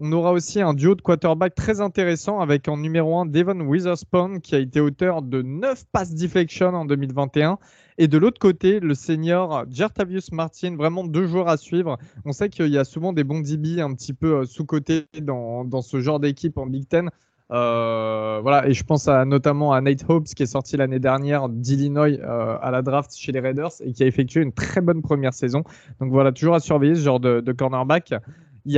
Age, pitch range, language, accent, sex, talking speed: 20-39, 135-175 Hz, French, French, male, 215 wpm